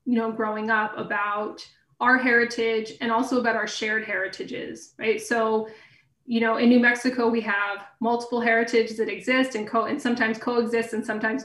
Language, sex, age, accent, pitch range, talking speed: English, female, 20-39, American, 215-235 Hz, 175 wpm